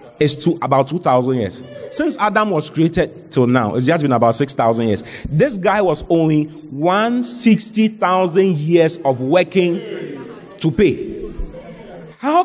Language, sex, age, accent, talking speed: English, male, 40-59, Nigerian, 130 wpm